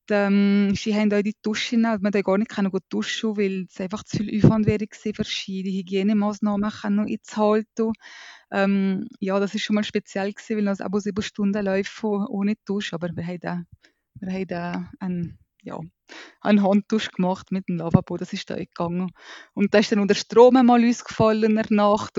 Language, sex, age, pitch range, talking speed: German, female, 20-39, 195-230 Hz, 190 wpm